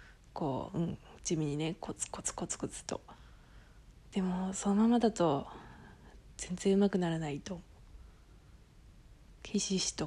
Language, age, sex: Japanese, 20-39, female